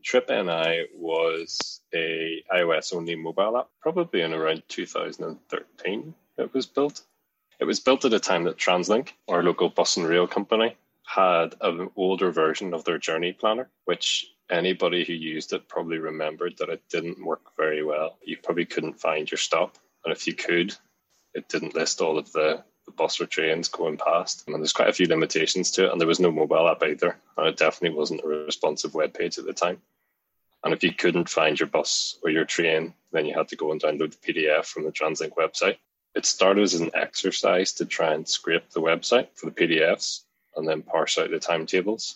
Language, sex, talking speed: English, male, 200 wpm